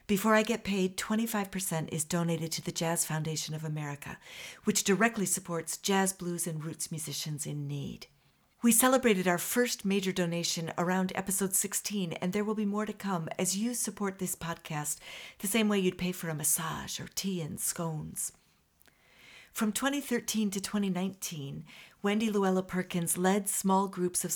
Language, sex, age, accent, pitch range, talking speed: English, female, 50-69, American, 165-205 Hz, 165 wpm